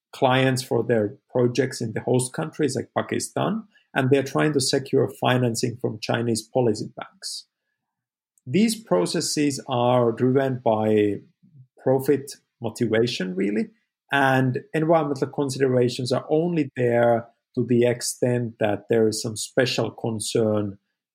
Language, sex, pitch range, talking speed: English, male, 115-145 Hz, 120 wpm